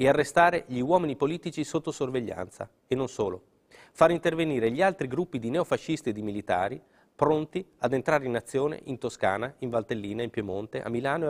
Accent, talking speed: native, 180 wpm